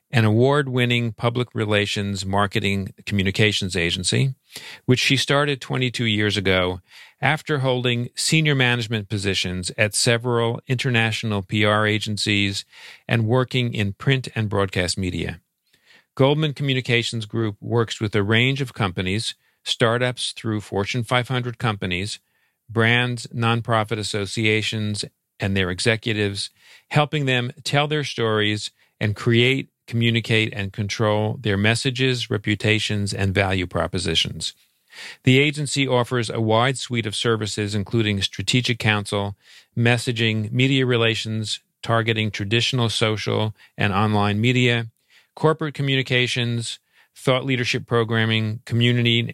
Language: English